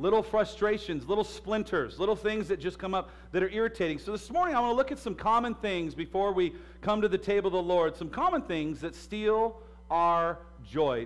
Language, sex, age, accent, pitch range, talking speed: English, male, 50-69, American, 155-210 Hz, 215 wpm